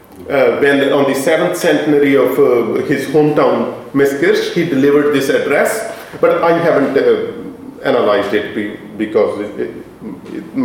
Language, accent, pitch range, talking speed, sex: English, Indian, 170-240 Hz, 140 wpm, male